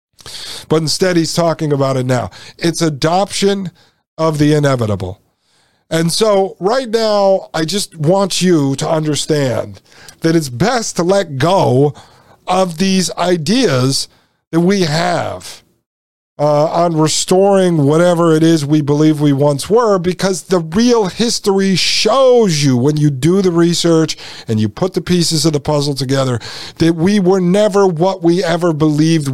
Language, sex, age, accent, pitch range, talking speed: English, male, 50-69, American, 150-195 Hz, 150 wpm